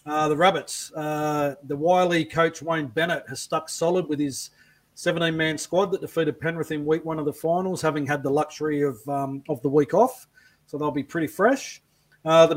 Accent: Australian